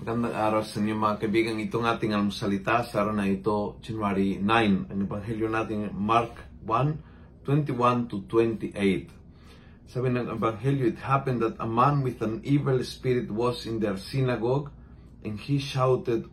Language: Filipino